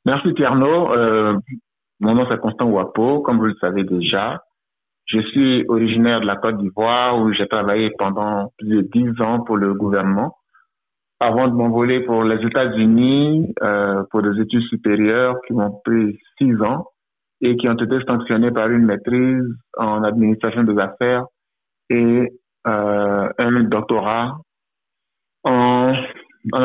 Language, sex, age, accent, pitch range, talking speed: French, male, 60-79, French, 105-120 Hz, 145 wpm